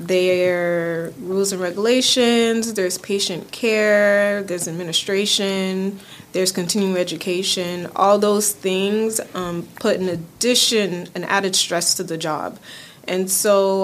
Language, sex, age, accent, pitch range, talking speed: English, female, 20-39, American, 175-210 Hz, 120 wpm